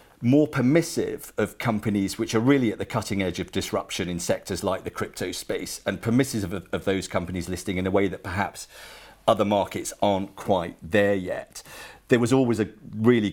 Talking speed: 190 wpm